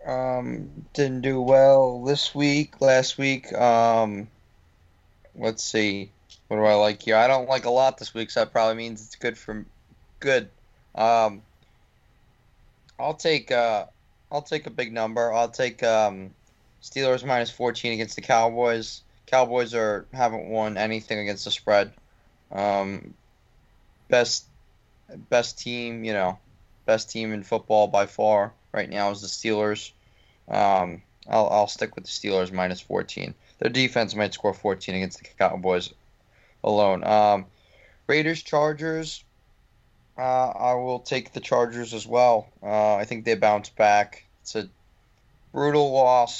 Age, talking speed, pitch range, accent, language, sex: 20-39, 150 wpm, 100-120 Hz, American, English, male